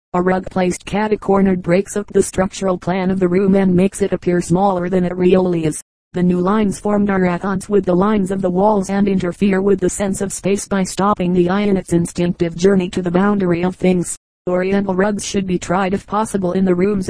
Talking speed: 225 wpm